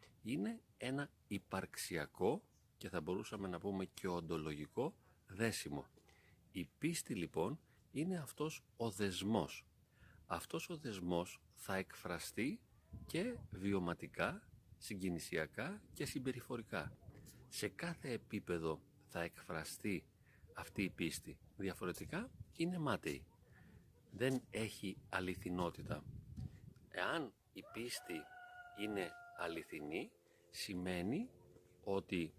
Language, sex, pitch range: Greek, male, 90-130 Hz